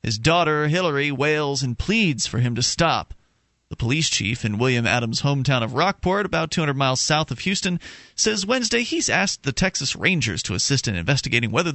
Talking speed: 190 wpm